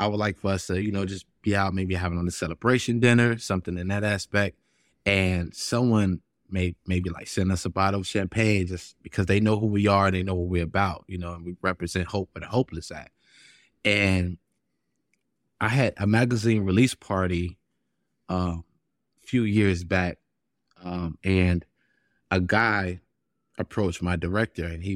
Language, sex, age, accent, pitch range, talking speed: English, male, 20-39, American, 90-105 Hz, 185 wpm